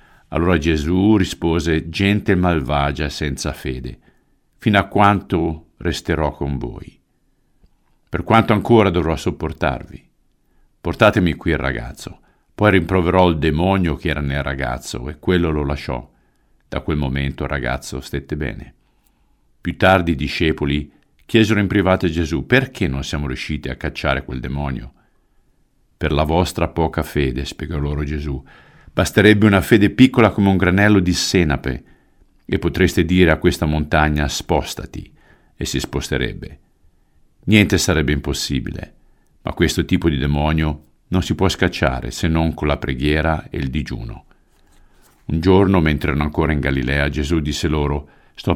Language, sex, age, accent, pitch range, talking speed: Italian, male, 50-69, native, 75-90 Hz, 145 wpm